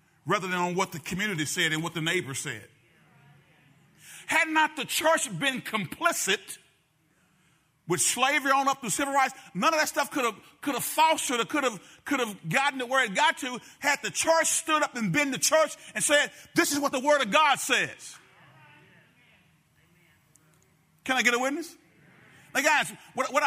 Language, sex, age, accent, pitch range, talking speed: English, male, 40-59, American, 205-300 Hz, 185 wpm